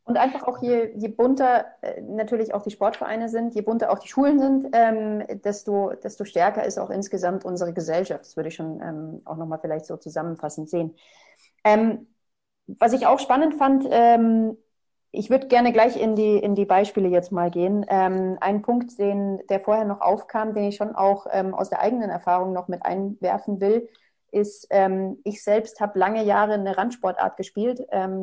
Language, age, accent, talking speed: German, 30-49, German, 190 wpm